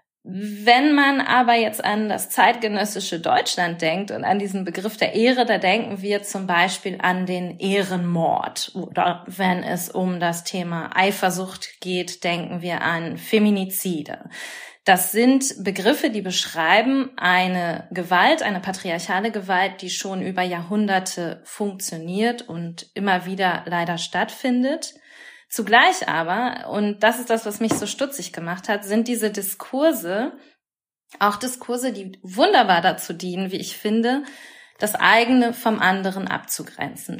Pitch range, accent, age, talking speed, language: 180-225 Hz, German, 20-39, 135 wpm, German